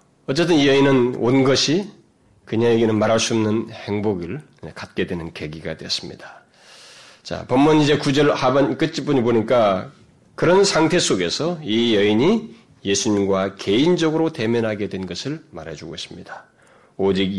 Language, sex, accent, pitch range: Korean, male, native, 95-155 Hz